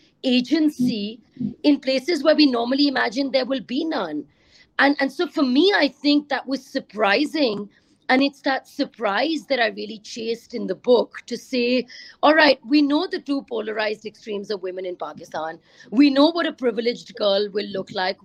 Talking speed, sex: 180 wpm, female